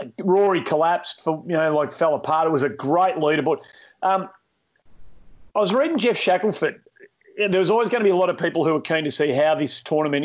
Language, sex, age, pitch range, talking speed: English, male, 40-59, 140-170 Hz, 215 wpm